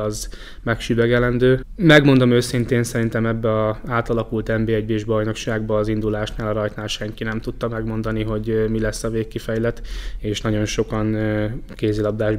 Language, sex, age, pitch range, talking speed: Hungarian, male, 10-29, 105-115 Hz, 135 wpm